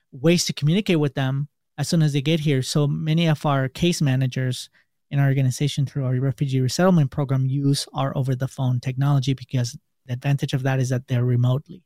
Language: English